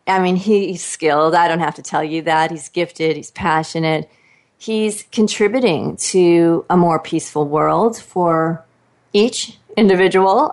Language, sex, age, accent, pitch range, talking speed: English, female, 40-59, American, 160-205 Hz, 140 wpm